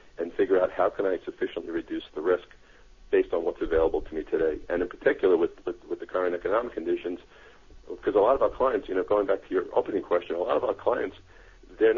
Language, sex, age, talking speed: English, male, 50-69, 235 wpm